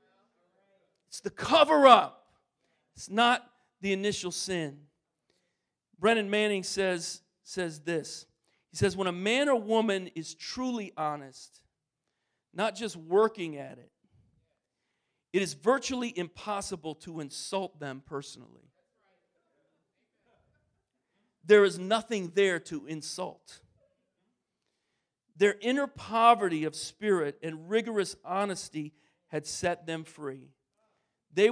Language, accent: English, American